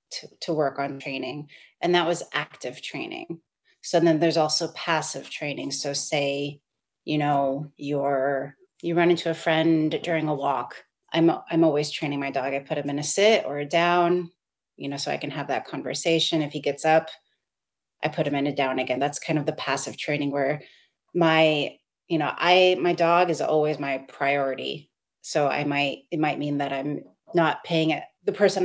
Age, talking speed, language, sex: 30-49, 195 wpm, English, female